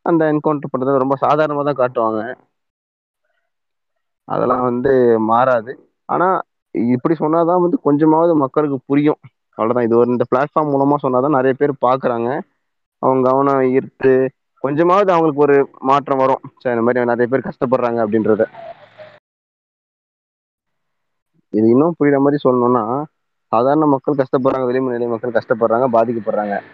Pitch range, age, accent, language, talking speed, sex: 120-145 Hz, 20-39, native, Tamil, 120 wpm, male